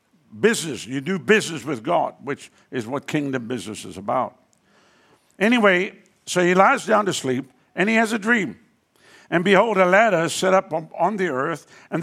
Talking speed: 175 wpm